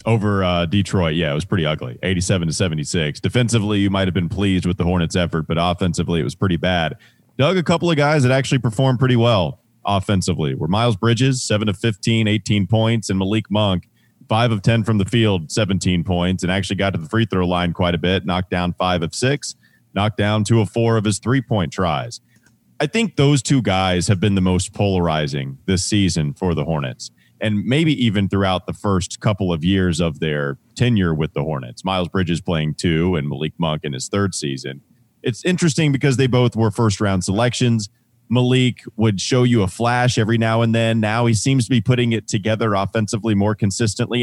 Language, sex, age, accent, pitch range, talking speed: English, male, 30-49, American, 90-115 Hz, 210 wpm